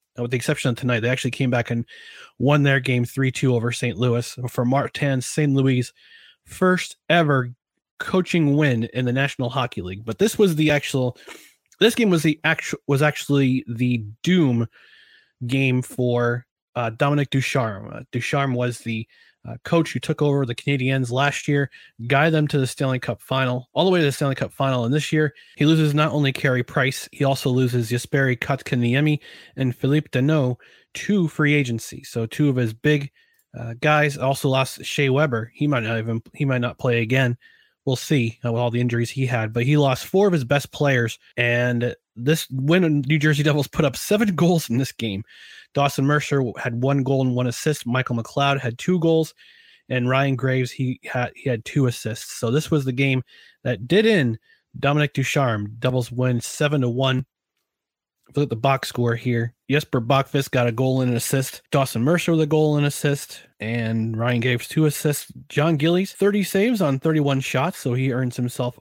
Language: English